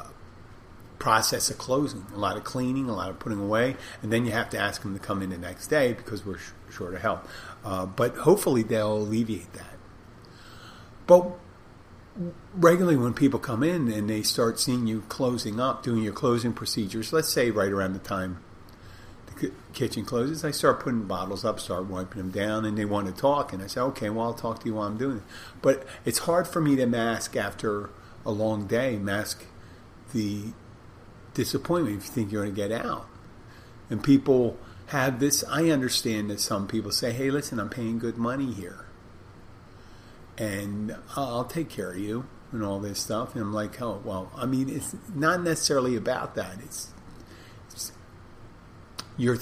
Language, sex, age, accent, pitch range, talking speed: English, male, 50-69, American, 100-125 Hz, 190 wpm